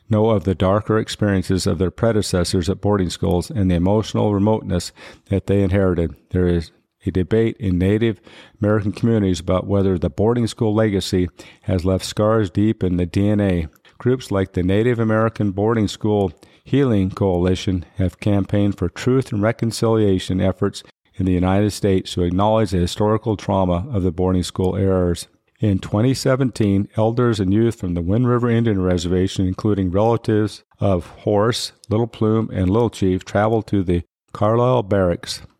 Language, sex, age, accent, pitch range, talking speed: English, male, 50-69, American, 95-110 Hz, 160 wpm